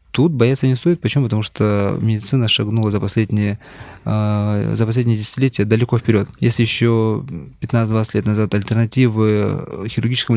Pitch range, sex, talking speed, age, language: 110-130 Hz, male, 125 wpm, 20-39, Russian